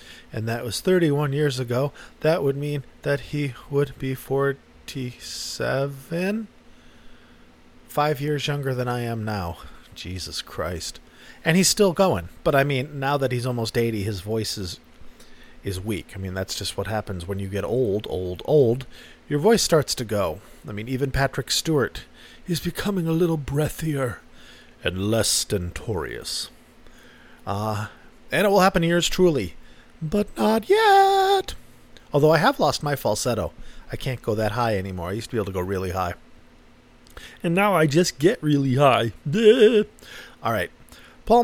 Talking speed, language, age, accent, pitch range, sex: 160 wpm, English, 40-59, American, 100-160 Hz, male